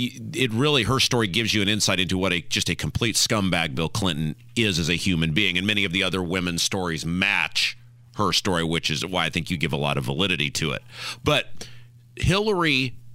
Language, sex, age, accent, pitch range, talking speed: English, male, 40-59, American, 105-140 Hz, 215 wpm